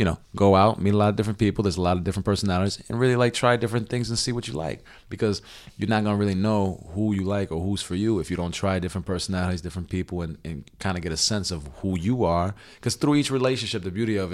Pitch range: 90-105 Hz